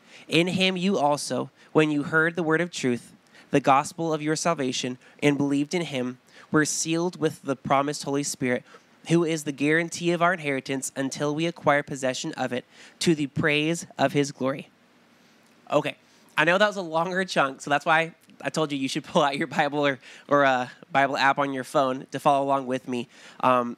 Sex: male